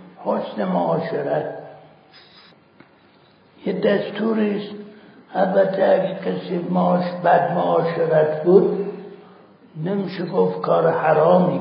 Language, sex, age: Persian, male, 60-79